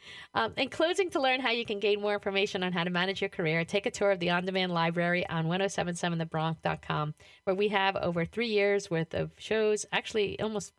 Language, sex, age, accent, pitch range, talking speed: English, female, 40-59, American, 170-205 Hz, 205 wpm